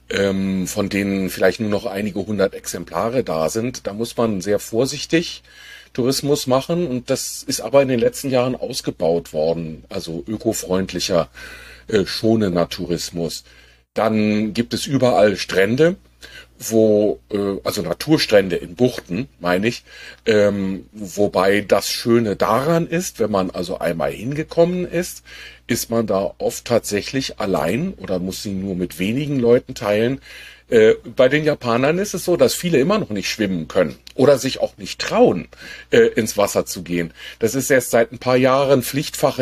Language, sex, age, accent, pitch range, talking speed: German, male, 40-59, German, 95-135 Hz, 155 wpm